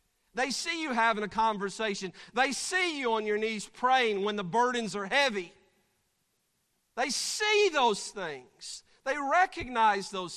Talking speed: 145 wpm